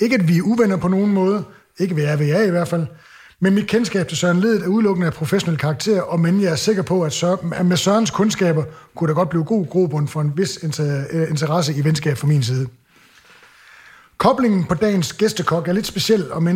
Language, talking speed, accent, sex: English, 225 wpm, Danish, male